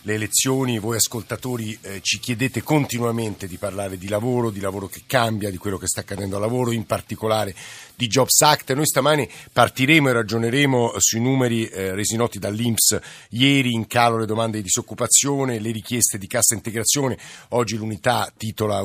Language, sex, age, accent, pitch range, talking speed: Italian, male, 50-69, native, 105-125 Hz, 170 wpm